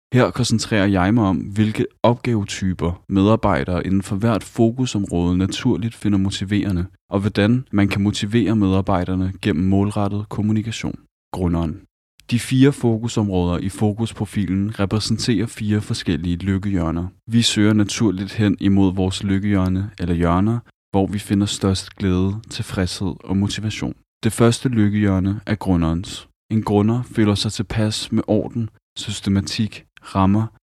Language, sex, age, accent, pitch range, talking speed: Danish, male, 20-39, native, 95-110 Hz, 125 wpm